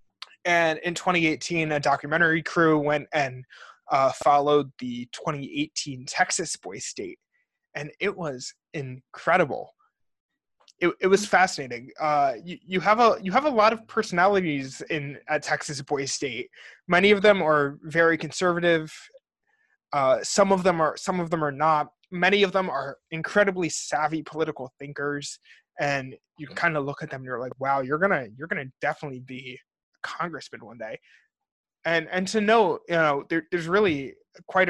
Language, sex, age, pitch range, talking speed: English, male, 20-39, 145-190 Hz, 160 wpm